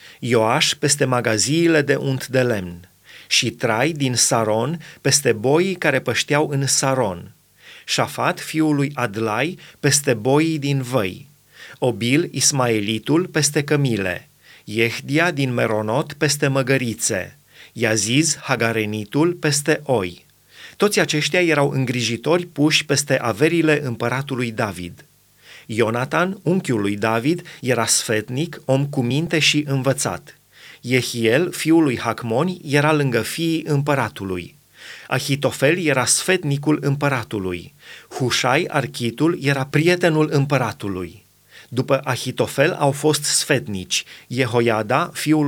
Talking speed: 105 wpm